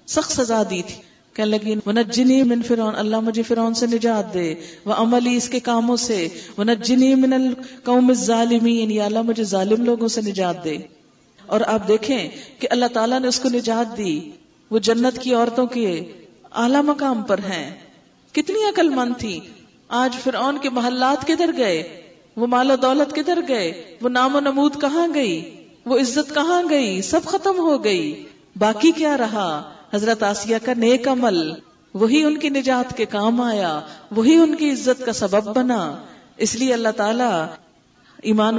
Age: 40-59